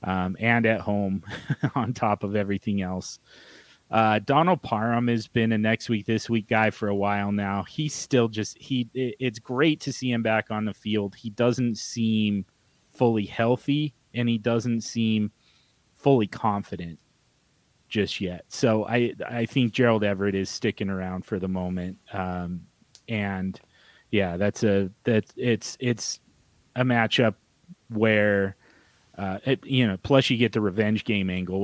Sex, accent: male, American